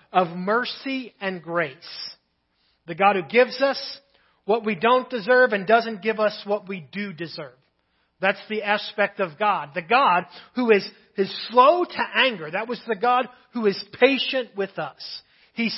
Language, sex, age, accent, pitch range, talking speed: English, male, 40-59, American, 190-250 Hz, 165 wpm